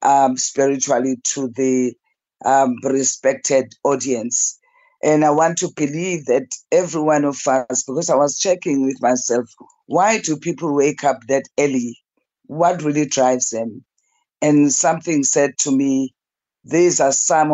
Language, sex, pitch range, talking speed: English, female, 135-160 Hz, 145 wpm